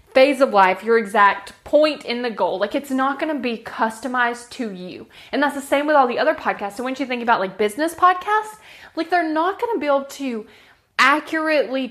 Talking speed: 220 wpm